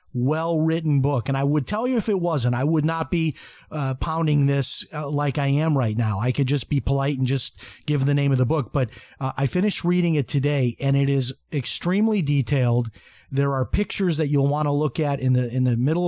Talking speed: 235 wpm